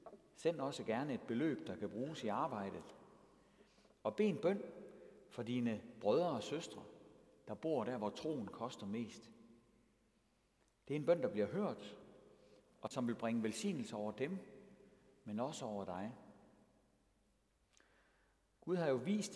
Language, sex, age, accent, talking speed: Danish, male, 60-79, native, 150 wpm